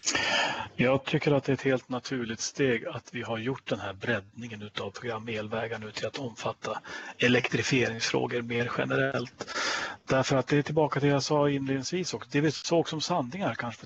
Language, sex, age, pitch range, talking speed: Swedish, male, 40-59, 120-145 Hz, 185 wpm